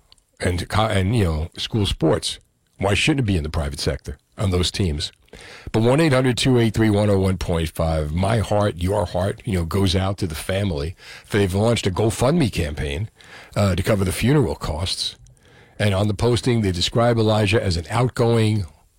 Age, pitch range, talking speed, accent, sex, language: 50-69, 95-120 Hz, 165 wpm, American, male, English